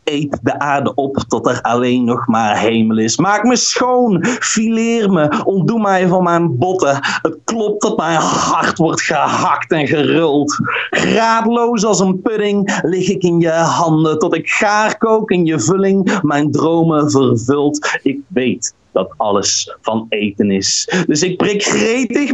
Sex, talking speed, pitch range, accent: male, 160 wpm, 155-230 Hz, Dutch